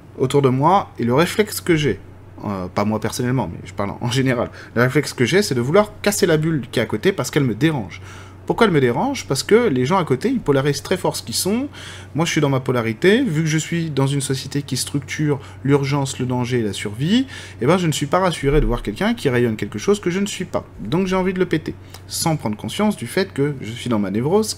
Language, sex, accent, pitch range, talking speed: French, male, French, 110-155 Hz, 270 wpm